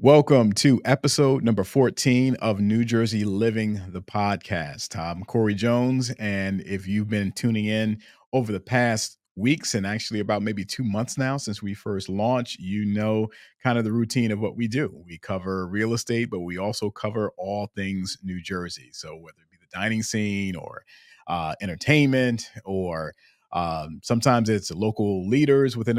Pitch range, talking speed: 95-120 Hz, 170 wpm